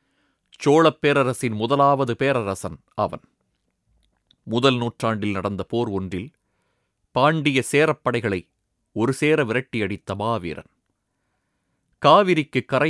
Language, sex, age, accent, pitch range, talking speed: Tamil, male, 30-49, native, 100-135 Hz, 80 wpm